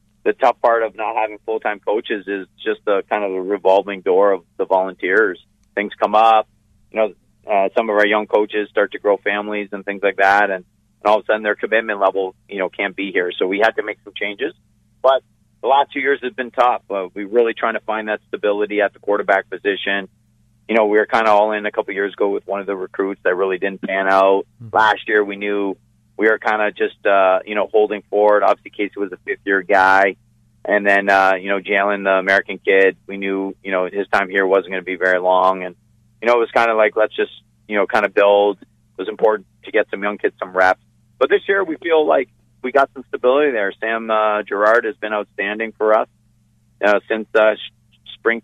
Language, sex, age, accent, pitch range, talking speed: English, male, 40-59, American, 100-110 Hz, 240 wpm